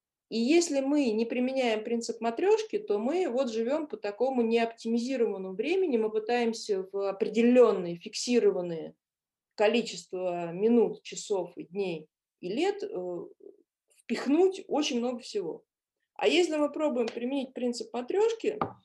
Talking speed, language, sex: 120 wpm, Russian, female